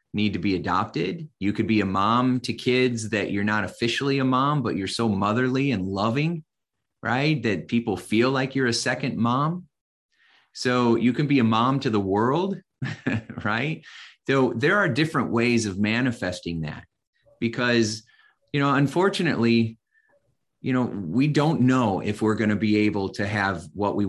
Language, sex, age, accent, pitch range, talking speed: English, male, 30-49, American, 100-125 Hz, 170 wpm